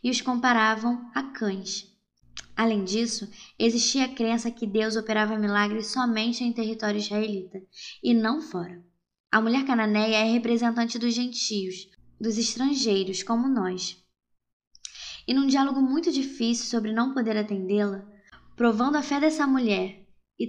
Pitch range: 205-235 Hz